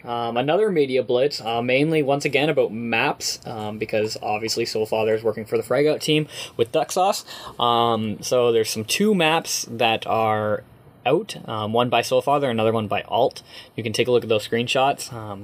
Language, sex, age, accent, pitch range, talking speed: English, male, 10-29, American, 110-145 Hz, 185 wpm